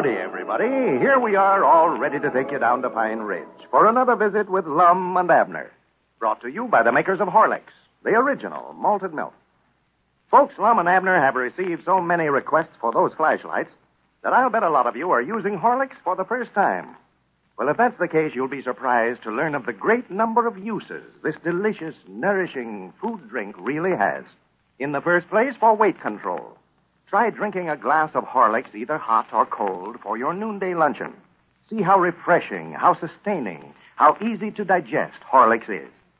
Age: 60-79